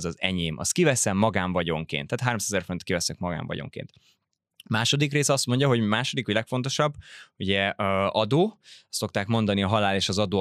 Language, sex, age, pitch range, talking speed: Hungarian, male, 20-39, 95-120 Hz, 165 wpm